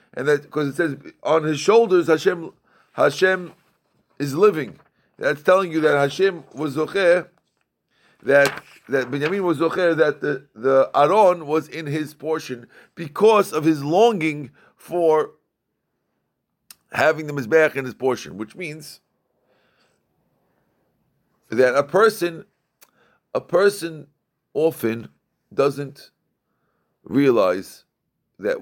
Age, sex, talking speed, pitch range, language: 50-69, male, 115 wpm, 145-190 Hz, English